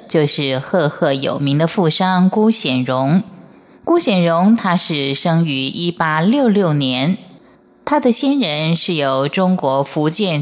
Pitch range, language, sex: 145-220 Hz, Chinese, female